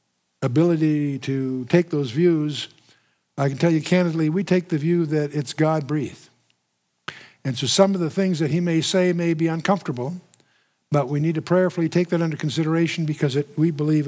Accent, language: American, English